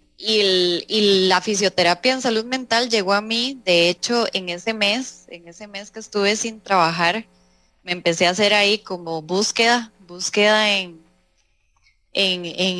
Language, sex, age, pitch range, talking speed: English, female, 20-39, 170-215 Hz, 155 wpm